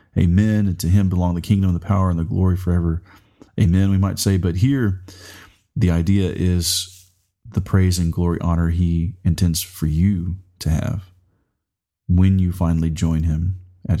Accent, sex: American, male